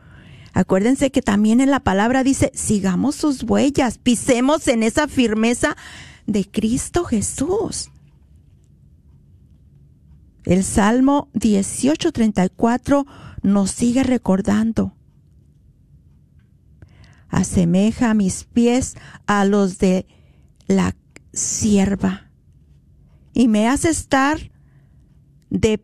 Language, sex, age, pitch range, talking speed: Spanish, female, 40-59, 200-265 Hz, 85 wpm